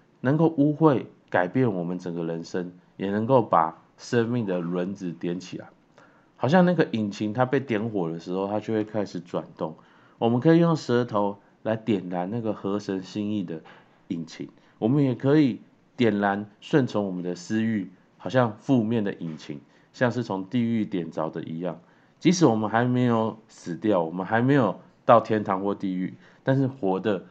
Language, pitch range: Chinese, 90-120 Hz